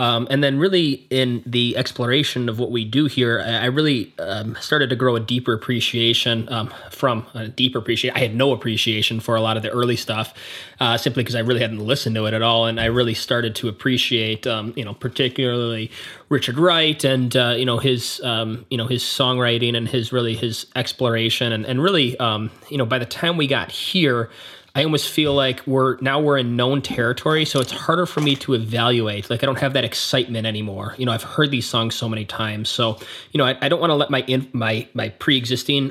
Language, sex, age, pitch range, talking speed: English, male, 20-39, 115-135 Hz, 225 wpm